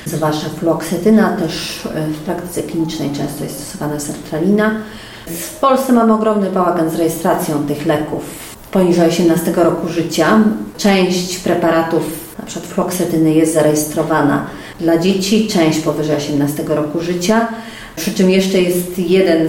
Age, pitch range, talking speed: 30-49, 155-185 Hz, 130 wpm